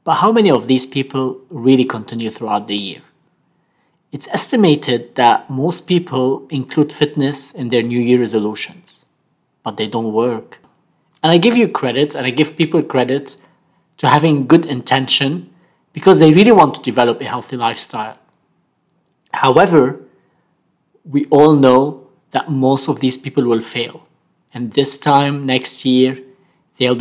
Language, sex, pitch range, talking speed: English, male, 125-150 Hz, 150 wpm